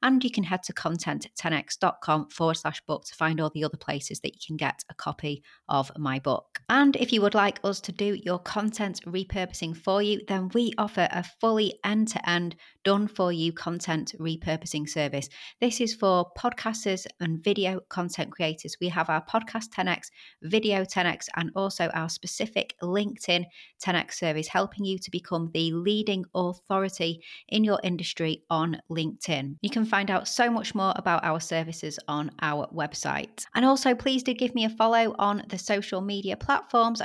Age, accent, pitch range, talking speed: 30-49, British, 165-215 Hz, 175 wpm